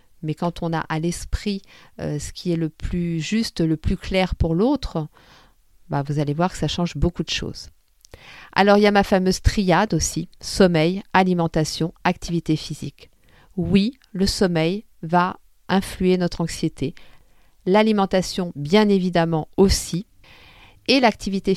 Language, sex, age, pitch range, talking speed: French, female, 50-69, 165-195 Hz, 140 wpm